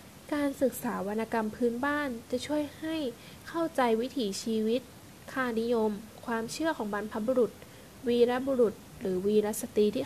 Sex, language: female, Thai